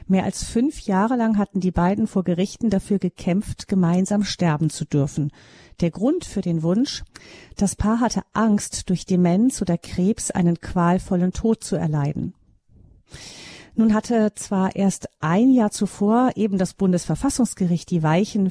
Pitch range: 175-210 Hz